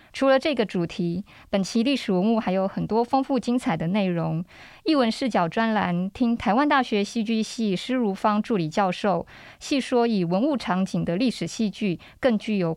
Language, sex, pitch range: Chinese, female, 180-235 Hz